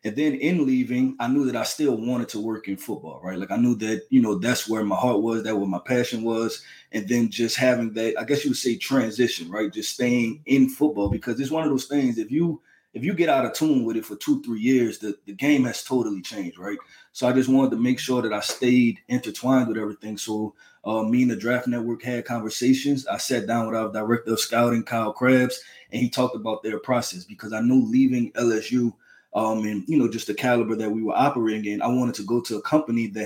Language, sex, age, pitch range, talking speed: English, male, 20-39, 110-130 Hz, 250 wpm